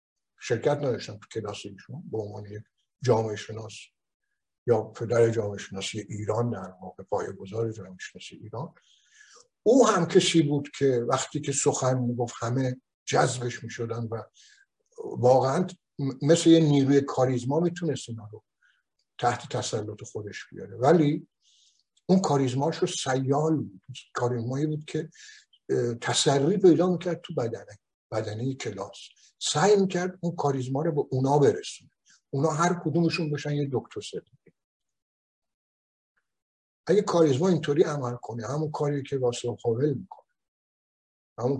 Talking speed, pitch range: 125 wpm, 115-160 Hz